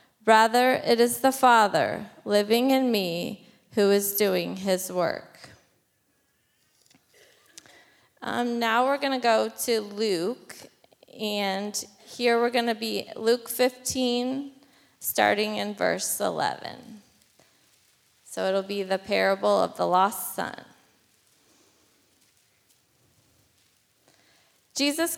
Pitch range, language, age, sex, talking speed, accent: 205-255 Hz, English, 20-39, female, 100 wpm, American